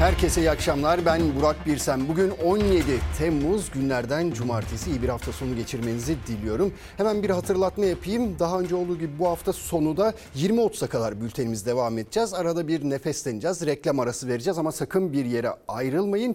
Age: 40-59